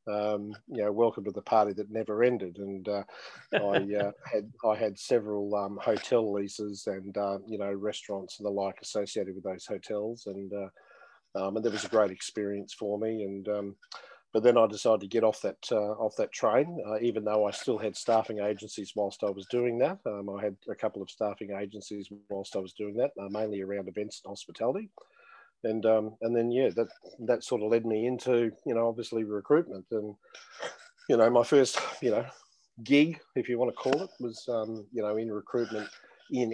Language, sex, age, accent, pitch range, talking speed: English, male, 40-59, Australian, 100-115 Hz, 210 wpm